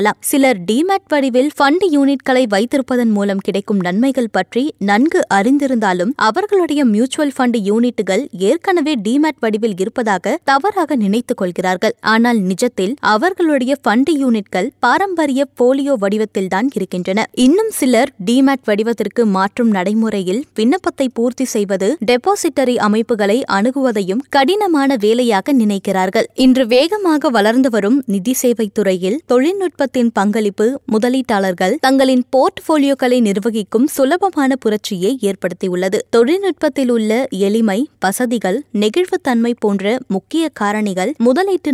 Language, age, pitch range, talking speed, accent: Tamil, 20-39, 210-275 Hz, 105 wpm, native